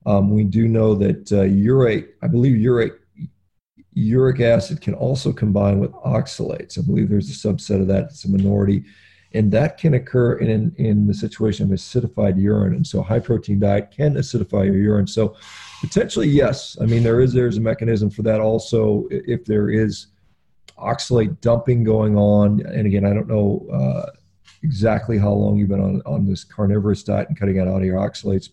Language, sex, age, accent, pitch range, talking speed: English, male, 40-59, American, 100-115 Hz, 190 wpm